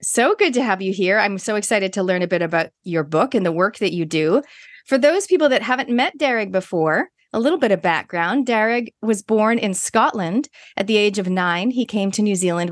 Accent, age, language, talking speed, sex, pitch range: American, 40-59, English, 235 wpm, female, 175-230 Hz